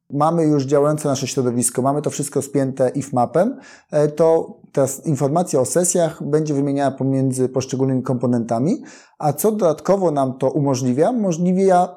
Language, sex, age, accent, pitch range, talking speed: Polish, male, 30-49, native, 130-160 Hz, 140 wpm